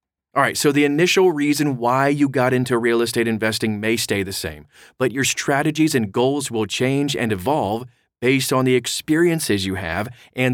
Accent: American